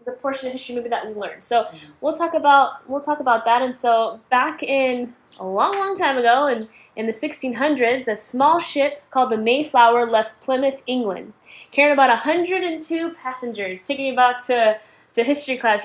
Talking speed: 185 wpm